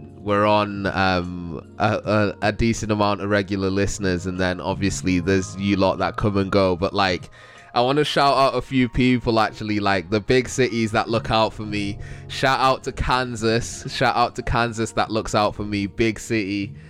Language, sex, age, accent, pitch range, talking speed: English, male, 20-39, British, 95-120 Hz, 200 wpm